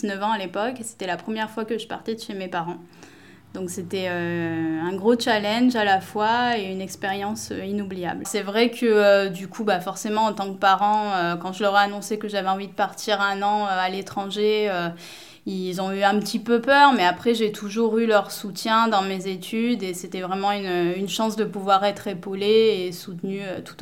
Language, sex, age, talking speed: French, female, 20-39, 220 wpm